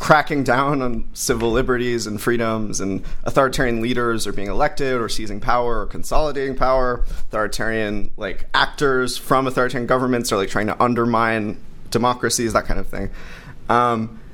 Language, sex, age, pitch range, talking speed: English, male, 20-39, 110-135 Hz, 150 wpm